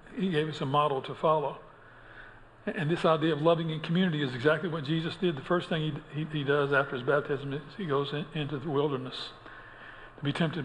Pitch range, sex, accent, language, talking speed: 150-180 Hz, male, American, English, 220 wpm